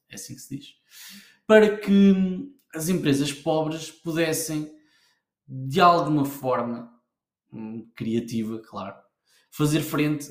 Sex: male